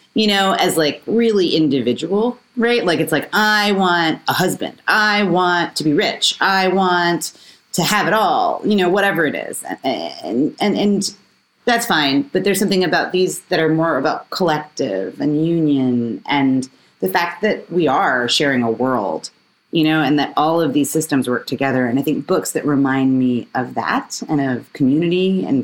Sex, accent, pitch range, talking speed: female, American, 140-215 Hz, 185 wpm